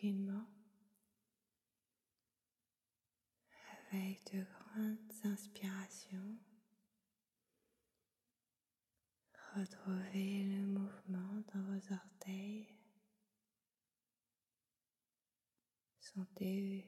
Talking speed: 40 wpm